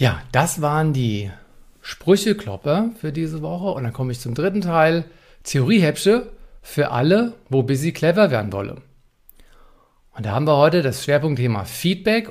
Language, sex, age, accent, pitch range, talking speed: German, male, 50-69, German, 130-185 Hz, 150 wpm